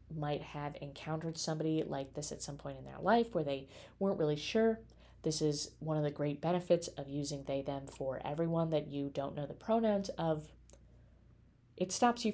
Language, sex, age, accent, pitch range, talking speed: English, female, 20-39, American, 145-175 Hz, 195 wpm